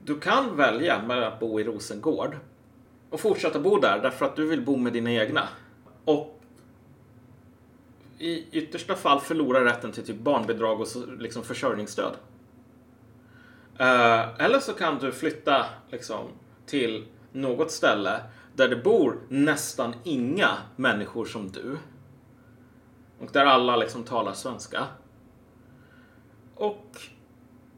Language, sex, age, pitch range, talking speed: Swedish, male, 30-49, 115-130 Hz, 120 wpm